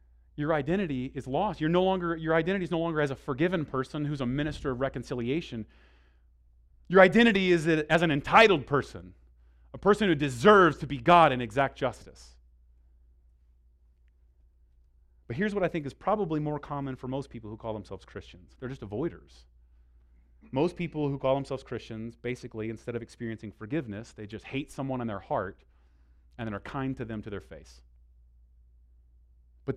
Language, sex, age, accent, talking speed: English, male, 30-49, American, 170 wpm